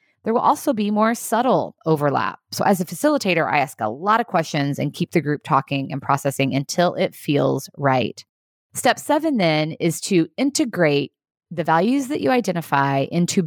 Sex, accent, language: female, American, English